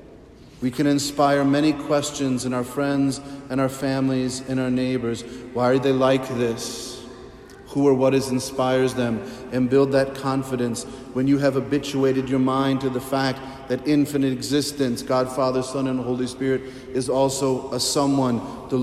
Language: English